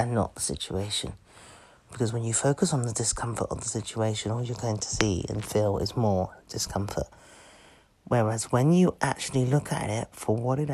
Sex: male